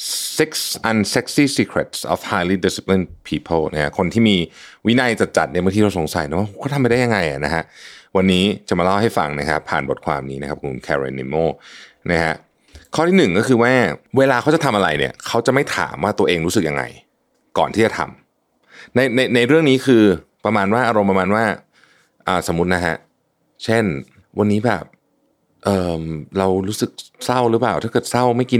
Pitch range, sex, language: 80-115 Hz, male, Thai